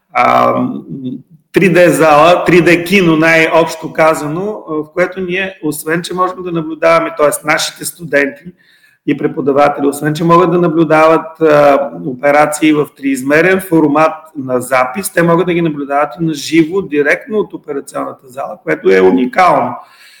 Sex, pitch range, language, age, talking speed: male, 150-175 Hz, Bulgarian, 40-59, 130 wpm